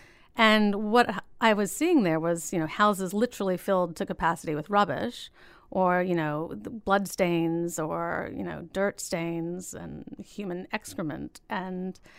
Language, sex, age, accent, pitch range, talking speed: English, female, 30-49, American, 180-210 Hz, 150 wpm